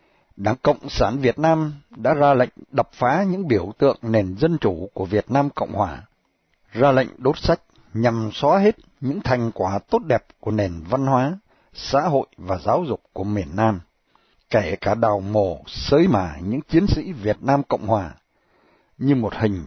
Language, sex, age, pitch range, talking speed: Vietnamese, male, 60-79, 105-145 Hz, 185 wpm